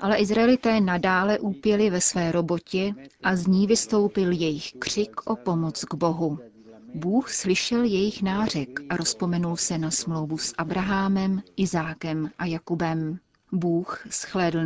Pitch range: 165-200 Hz